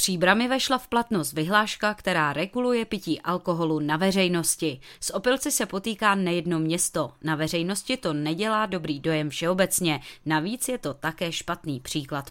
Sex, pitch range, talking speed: female, 155-210 Hz, 145 wpm